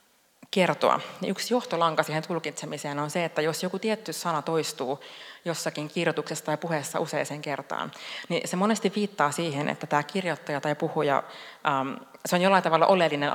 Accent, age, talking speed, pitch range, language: native, 30-49, 145 wpm, 145-170 Hz, Finnish